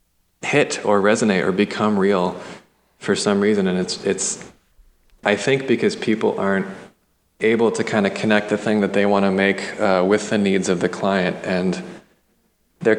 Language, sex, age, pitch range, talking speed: English, male, 20-39, 95-110 Hz, 175 wpm